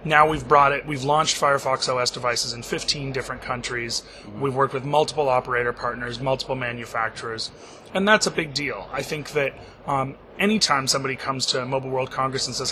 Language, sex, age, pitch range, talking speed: English, male, 30-49, 125-155 Hz, 185 wpm